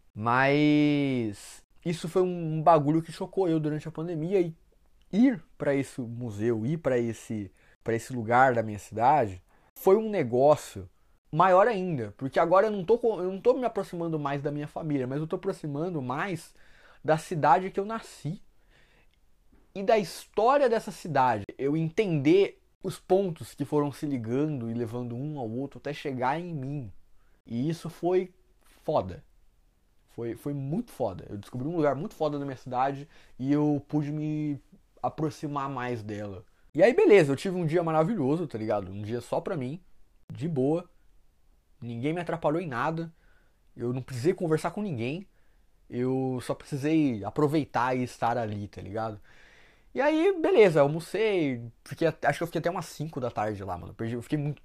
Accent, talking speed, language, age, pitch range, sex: Brazilian, 170 wpm, Portuguese, 20-39, 120-170 Hz, male